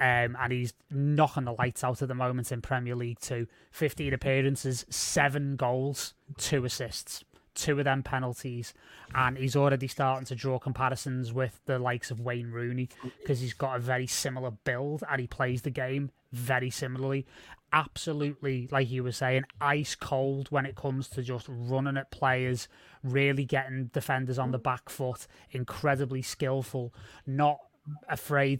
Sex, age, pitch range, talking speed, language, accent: male, 20-39, 125-140 Hz, 160 wpm, English, British